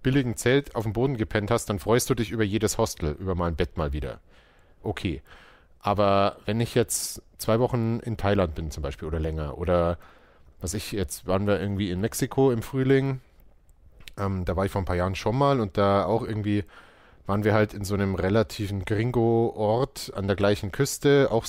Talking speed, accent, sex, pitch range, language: 200 wpm, German, male, 90-120 Hz, German